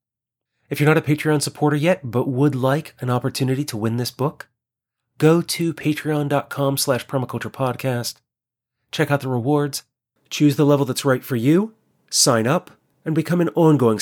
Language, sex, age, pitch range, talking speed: English, male, 30-49, 115-145 Hz, 155 wpm